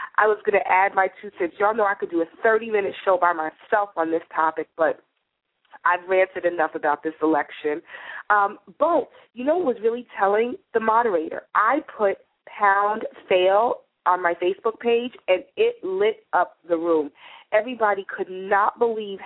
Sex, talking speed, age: female, 180 wpm, 30-49